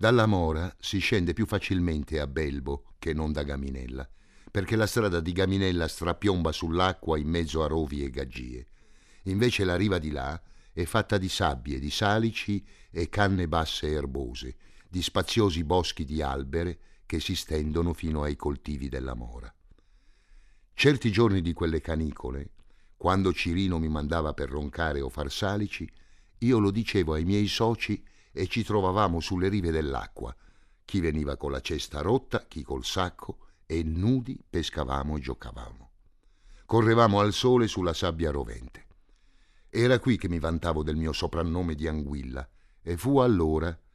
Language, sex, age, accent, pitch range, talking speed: Italian, male, 50-69, native, 75-100 Hz, 155 wpm